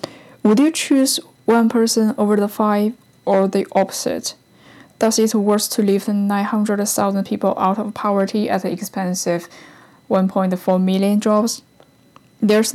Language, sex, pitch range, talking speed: English, female, 195-235 Hz, 130 wpm